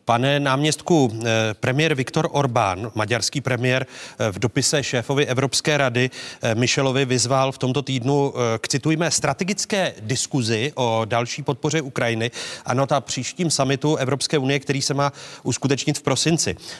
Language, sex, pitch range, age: Czech, male, 120-150 Hz, 30-49